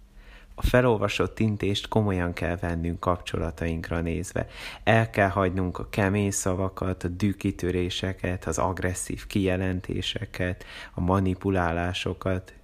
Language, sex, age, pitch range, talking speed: Hungarian, male, 30-49, 85-100 Hz, 100 wpm